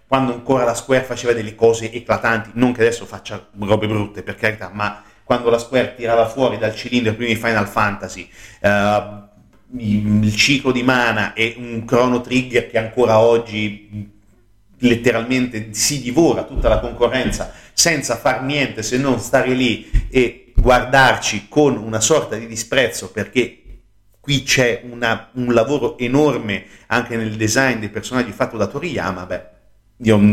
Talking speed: 150 wpm